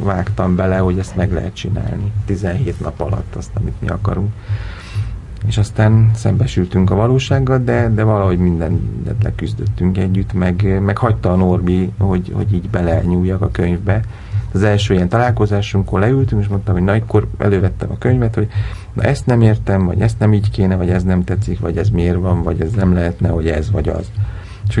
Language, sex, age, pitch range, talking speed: Hungarian, male, 40-59, 95-110 Hz, 185 wpm